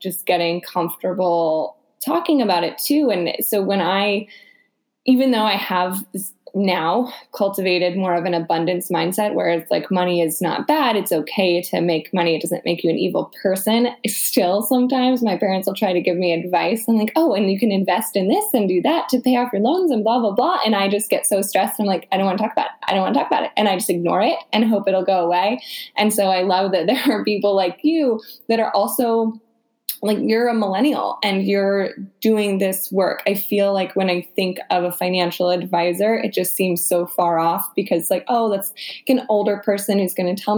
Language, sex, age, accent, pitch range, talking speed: English, female, 10-29, American, 180-220 Hz, 225 wpm